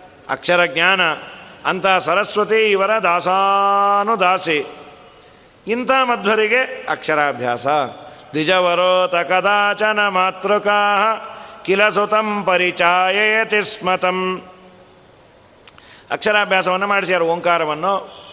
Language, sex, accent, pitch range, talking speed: Kannada, male, native, 170-200 Hz, 60 wpm